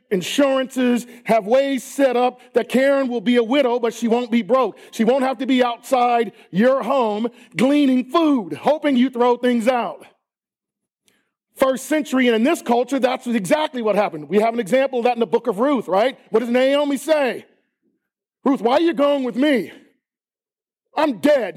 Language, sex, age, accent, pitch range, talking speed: English, male, 40-59, American, 215-285 Hz, 185 wpm